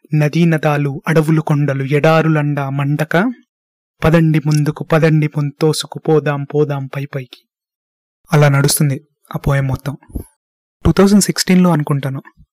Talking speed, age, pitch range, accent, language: 105 wpm, 20-39, 145-160 Hz, native, Telugu